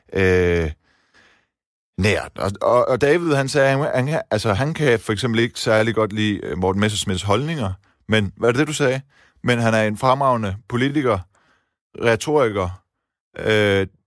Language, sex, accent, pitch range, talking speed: Danish, male, native, 100-130 Hz, 150 wpm